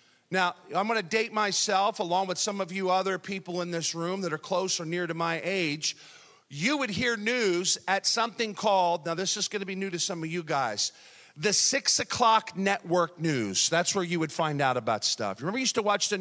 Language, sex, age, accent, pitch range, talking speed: English, male, 40-59, American, 175-220 Hz, 230 wpm